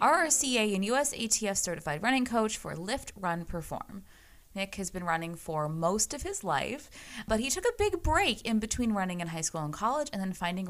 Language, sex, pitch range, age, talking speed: English, female, 170-265 Hz, 20-39, 200 wpm